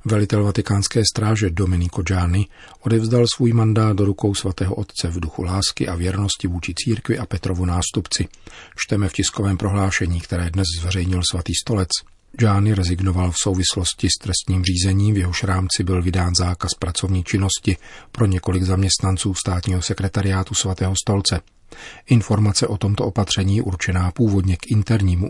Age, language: 40-59, Czech